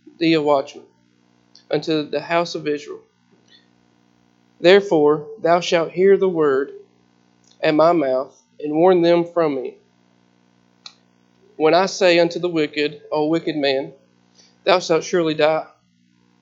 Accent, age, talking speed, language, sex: American, 40-59, 125 wpm, English, male